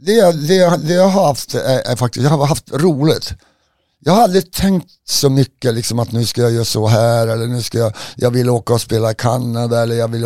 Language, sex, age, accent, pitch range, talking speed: Swedish, male, 60-79, native, 115-140 Hz, 240 wpm